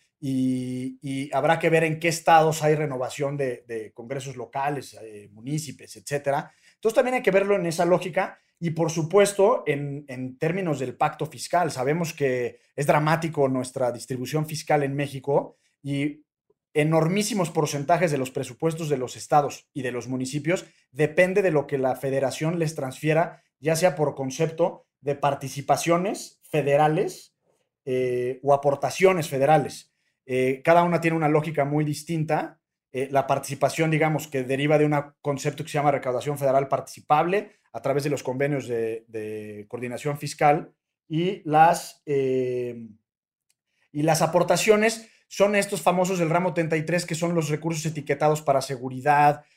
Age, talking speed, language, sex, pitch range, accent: 30-49, 155 wpm, Spanish, male, 135-170 Hz, Mexican